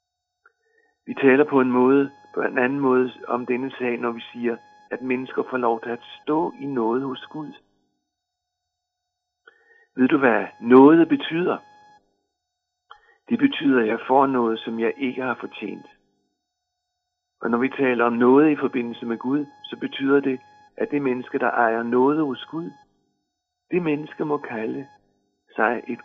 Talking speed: 160 wpm